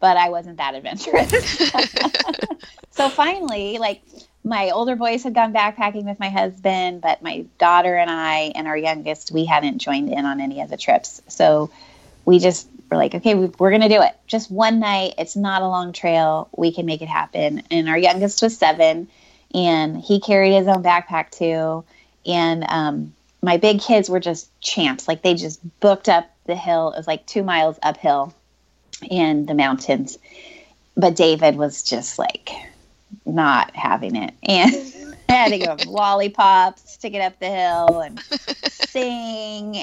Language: English